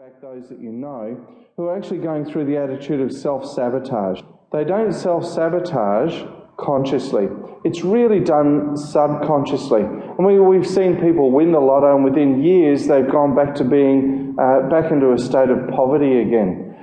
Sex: male